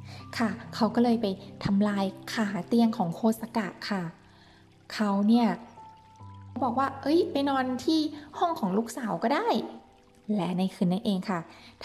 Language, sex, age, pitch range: Thai, female, 20-39, 190-260 Hz